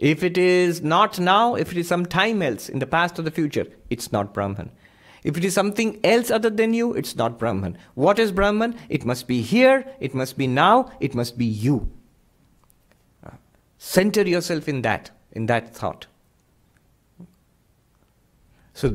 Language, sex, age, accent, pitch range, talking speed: English, male, 50-69, Indian, 120-175 Hz, 170 wpm